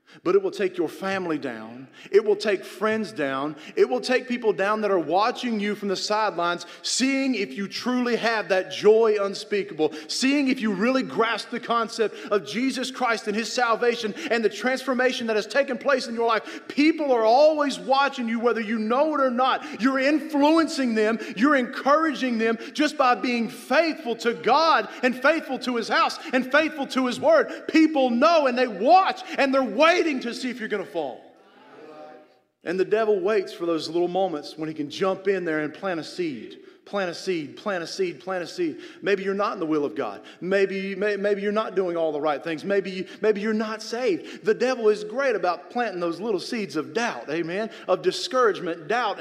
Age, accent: 40-59, American